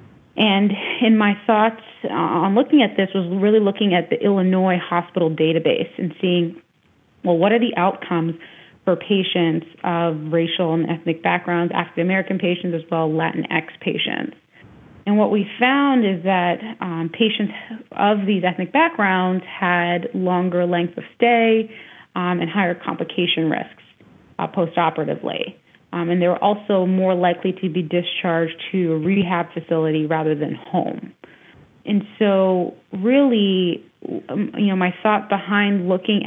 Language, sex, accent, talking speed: English, female, American, 140 wpm